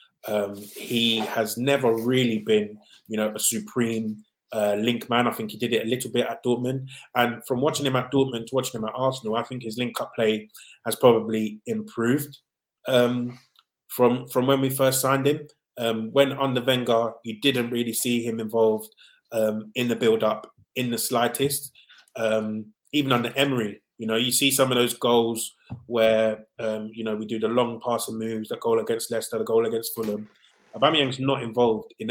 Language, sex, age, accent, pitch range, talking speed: English, male, 20-39, British, 110-130 Hz, 190 wpm